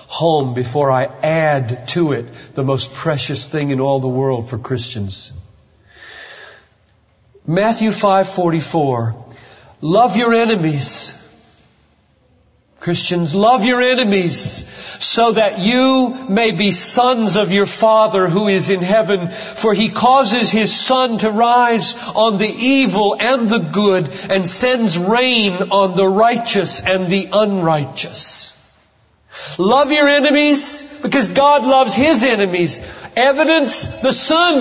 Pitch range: 160-255 Hz